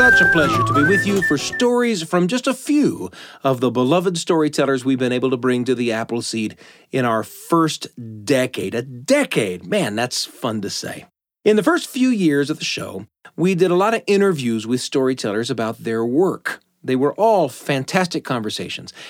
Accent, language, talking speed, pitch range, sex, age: American, English, 190 wpm, 120-185 Hz, male, 40-59